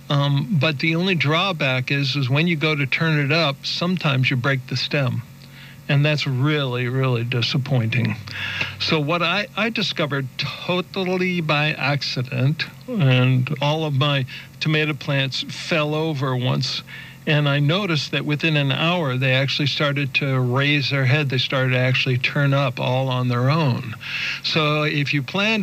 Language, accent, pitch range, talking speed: English, American, 130-160 Hz, 160 wpm